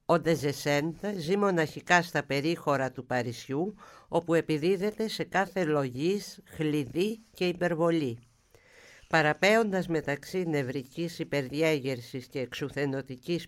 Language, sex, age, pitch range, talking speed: Greek, female, 60-79, 140-180 Hz, 95 wpm